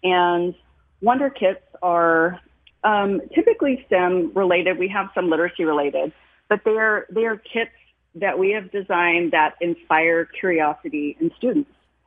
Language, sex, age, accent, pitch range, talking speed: English, female, 40-59, American, 170-210 Hz, 140 wpm